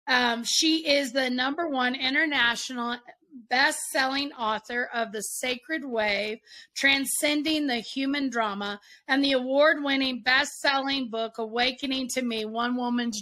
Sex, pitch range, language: female, 230-290 Hz, English